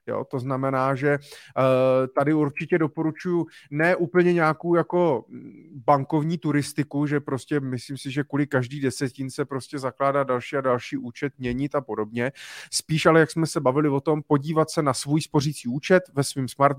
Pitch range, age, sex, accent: 130-150 Hz, 30-49, male, native